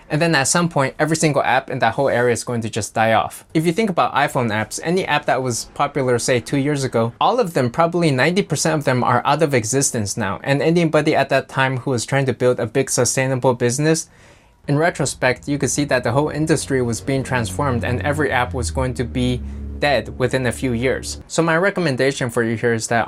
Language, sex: English, male